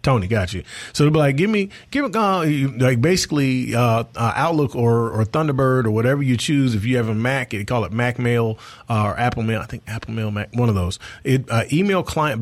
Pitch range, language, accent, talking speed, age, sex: 105-130 Hz, English, American, 235 wpm, 30-49, male